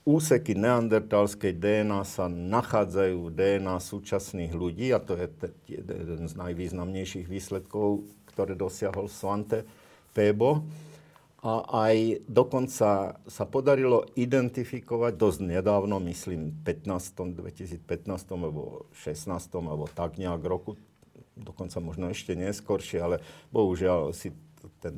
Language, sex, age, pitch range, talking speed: Slovak, male, 50-69, 90-110 Hz, 110 wpm